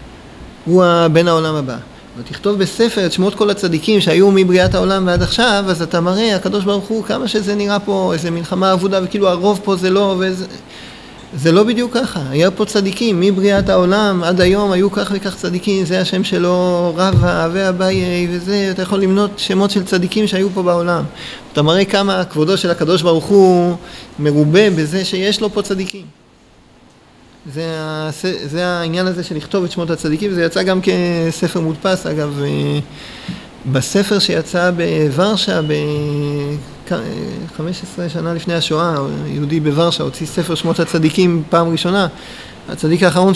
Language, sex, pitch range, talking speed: Hebrew, male, 160-195 Hz, 155 wpm